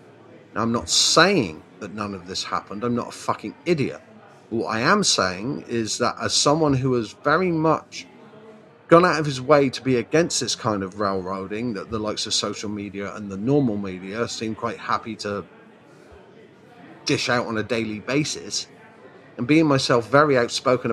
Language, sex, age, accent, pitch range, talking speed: English, male, 40-59, British, 110-140 Hz, 180 wpm